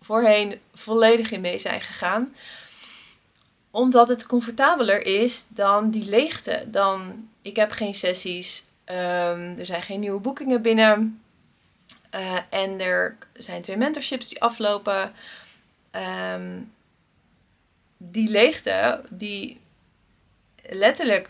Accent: Dutch